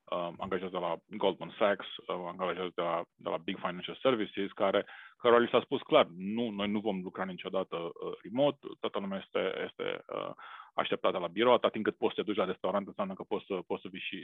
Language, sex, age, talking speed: Romanian, male, 30-49, 205 wpm